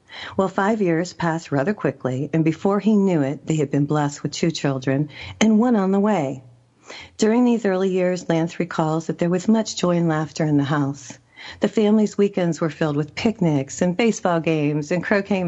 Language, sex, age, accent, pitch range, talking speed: English, female, 40-59, American, 150-205 Hz, 200 wpm